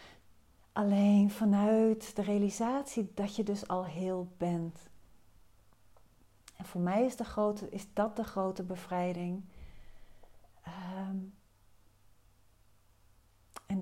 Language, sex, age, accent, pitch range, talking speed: Dutch, female, 40-59, Dutch, 160-205 Hz, 85 wpm